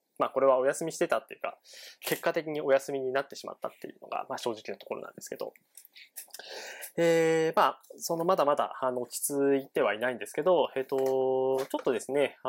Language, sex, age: Japanese, male, 20-39